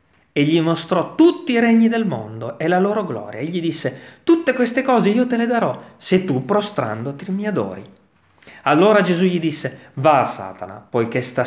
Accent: native